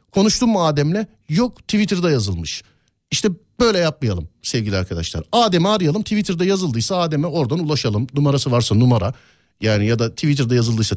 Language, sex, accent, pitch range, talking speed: Turkish, male, native, 100-155 Hz, 140 wpm